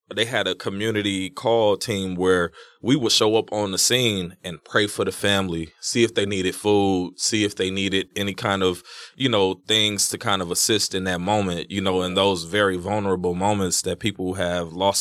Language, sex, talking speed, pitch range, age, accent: English, male, 210 wpm, 95-110 Hz, 20-39, American